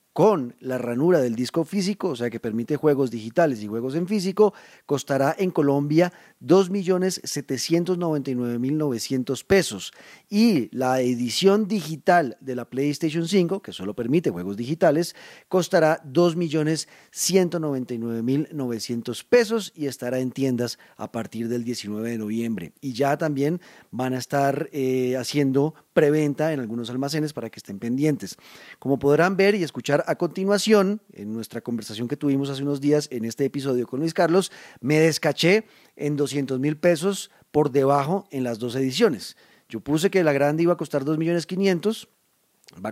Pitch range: 130-170 Hz